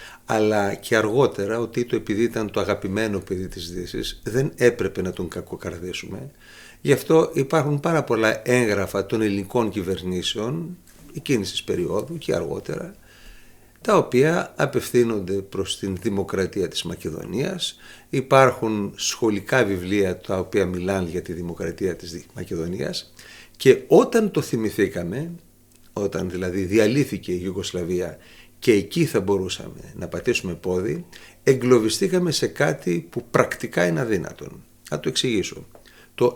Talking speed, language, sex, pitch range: 125 wpm, Greek, male, 100-135 Hz